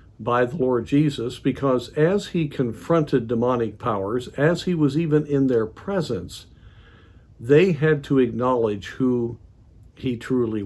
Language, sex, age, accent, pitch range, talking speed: English, male, 60-79, American, 110-145 Hz, 135 wpm